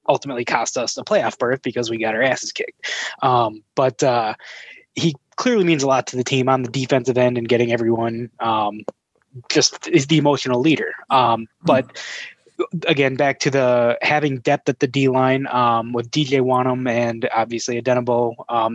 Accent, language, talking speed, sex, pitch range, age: American, English, 180 wpm, male, 120-145 Hz, 20-39